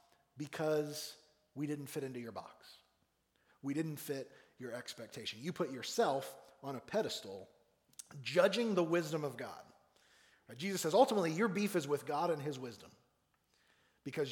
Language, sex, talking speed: English, male, 145 wpm